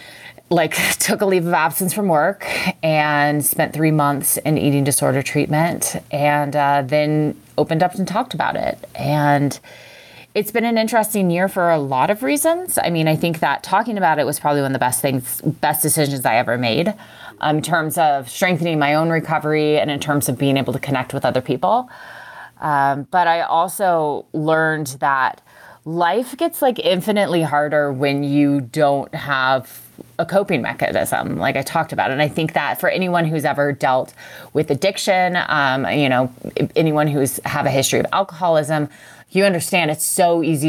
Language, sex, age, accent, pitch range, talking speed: English, female, 20-39, American, 140-170 Hz, 180 wpm